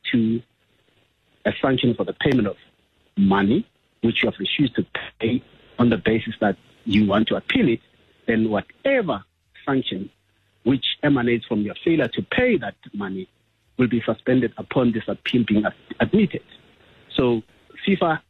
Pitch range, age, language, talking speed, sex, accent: 100-135 Hz, 50-69, English, 150 wpm, male, South African